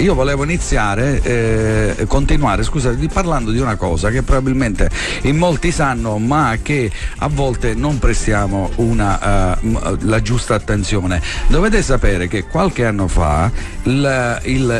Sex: male